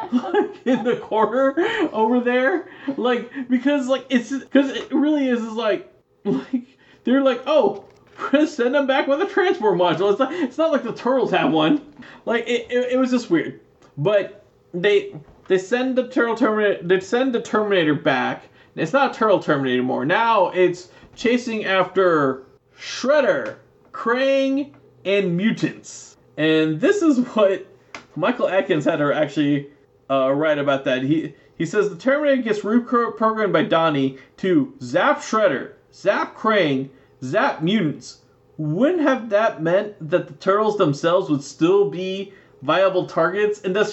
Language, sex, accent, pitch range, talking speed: English, male, American, 180-270 Hz, 155 wpm